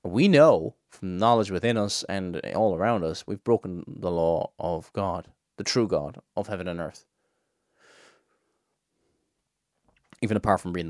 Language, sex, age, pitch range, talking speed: English, male, 30-49, 115-170 Hz, 150 wpm